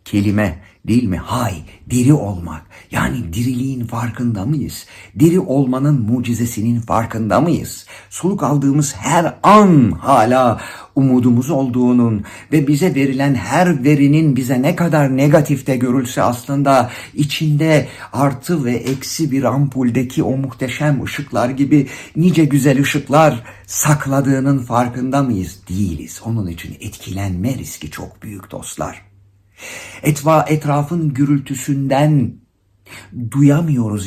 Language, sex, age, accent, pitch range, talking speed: Turkish, male, 60-79, native, 105-140 Hz, 105 wpm